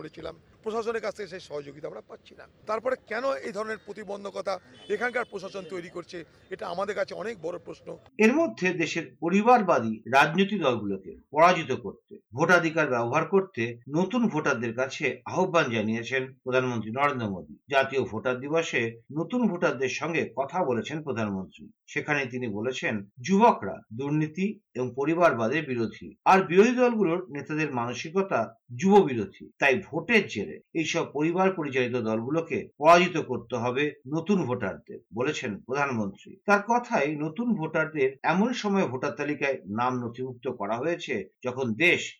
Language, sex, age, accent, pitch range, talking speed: Bengali, male, 50-69, native, 130-195 Hz, 95 wpm